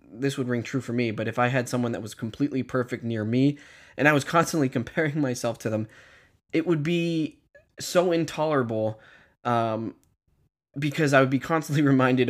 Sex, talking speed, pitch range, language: male, 180 wpm, 115-140 Hz, English